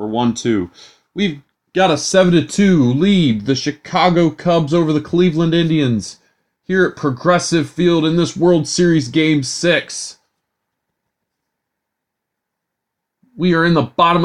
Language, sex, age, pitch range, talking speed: English, male, 30-49, 150-175 Hz, 120 wpm